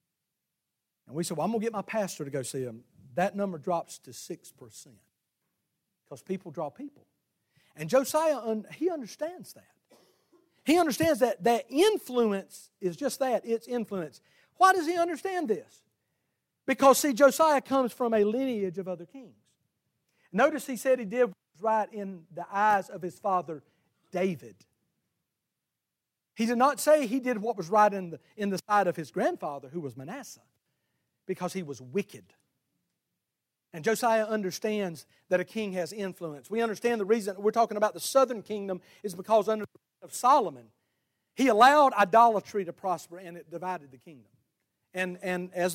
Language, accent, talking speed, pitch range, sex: English, American, 170 wpm, 165-245 Hz, male